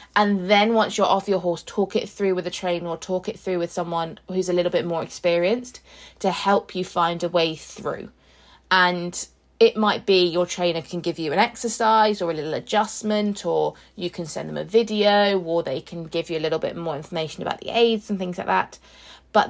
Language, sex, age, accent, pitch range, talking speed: English, female, 20-39, British, 170-200 Hz, 220 wpm